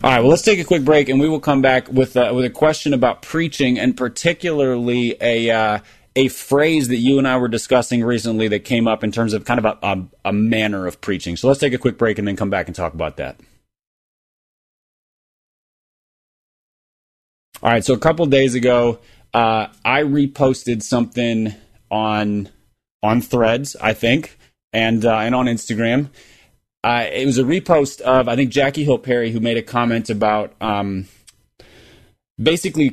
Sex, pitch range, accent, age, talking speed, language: male, 110-130 Hz, American, 30-49, 185 wpm, English